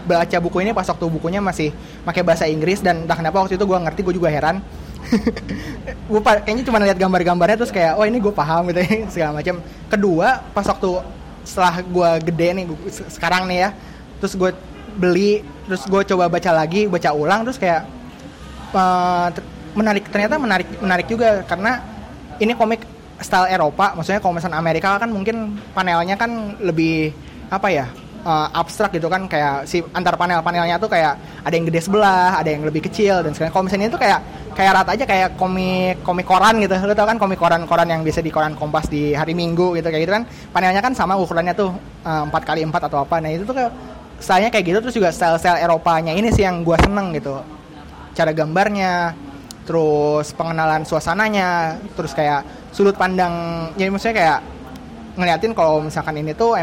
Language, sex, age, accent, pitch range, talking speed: Indonesian, male, 20-39, native, 165-195 Hz, 185 wpm